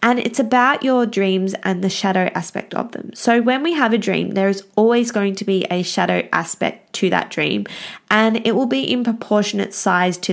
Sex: female